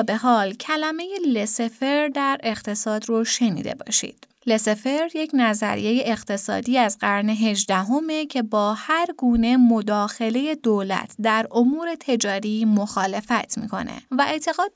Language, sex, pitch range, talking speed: Persian, female, 210-275 Hz, 120 wpm